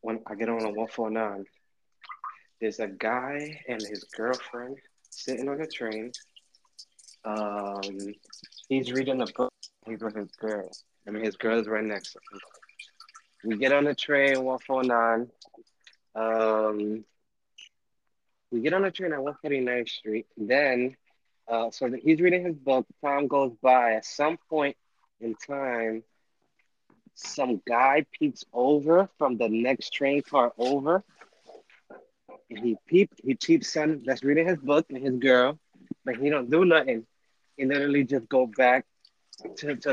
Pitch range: 115-145 Hz